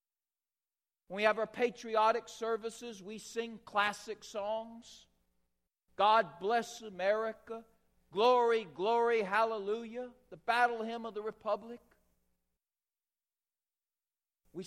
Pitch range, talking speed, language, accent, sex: 175-235 Hz, 95 wpm, English, American, male